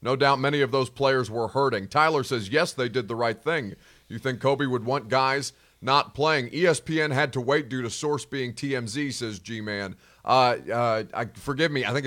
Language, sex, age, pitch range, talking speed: English, male, 30-49, 115-150 Hz, 210 wpm